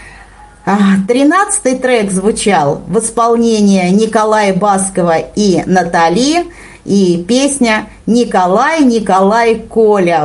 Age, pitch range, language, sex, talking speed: 40-59, 180-245 Hz, Russian, female, 80 wpm